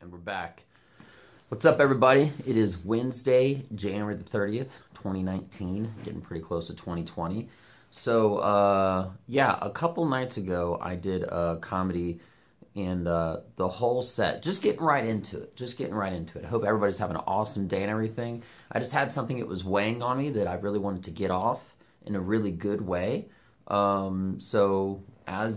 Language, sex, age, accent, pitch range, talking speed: English, male, 30-49, American, 95-120 Hz, 180 wpm